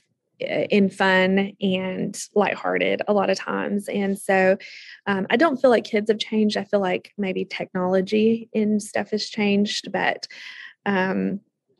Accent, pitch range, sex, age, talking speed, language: American, 185-210 Hz, female, 20-39, 145 wpm, English